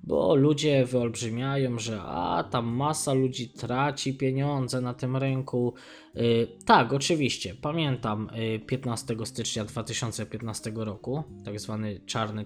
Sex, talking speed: male, 110 wpm